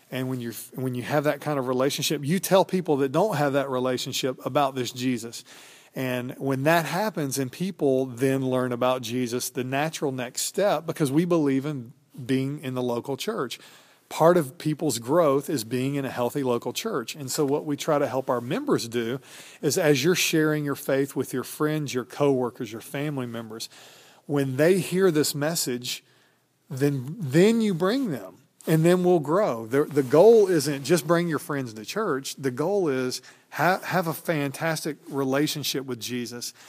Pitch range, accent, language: 130-155 Hz, American, English